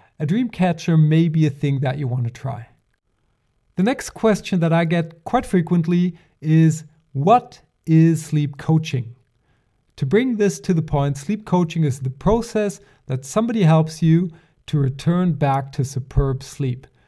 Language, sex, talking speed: English, male, 160 wpm